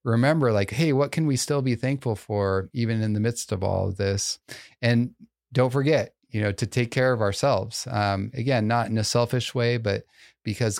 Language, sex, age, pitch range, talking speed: English, male, 30-49, 105-125 Hz, 205 wpm